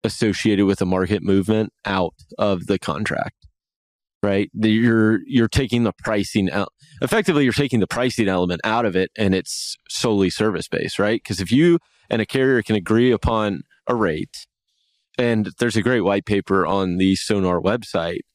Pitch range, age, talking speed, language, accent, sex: 100-135 Hz, 30-49, 165 wpm, English, American, male